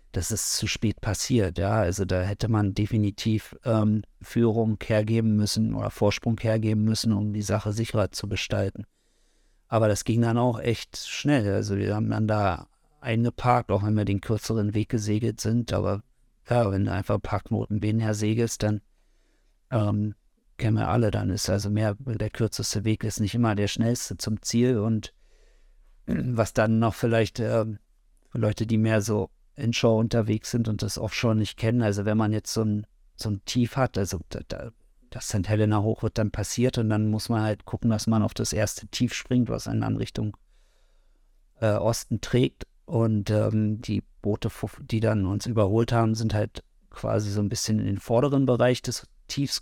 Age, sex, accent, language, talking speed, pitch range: 50-69, male, German, German, 180 wpm, 105-115 Hz